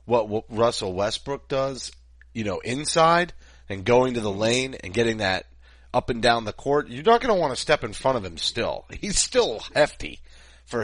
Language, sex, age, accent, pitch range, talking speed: English, male, 30-49, American, 85-130 Hz, 200 wpm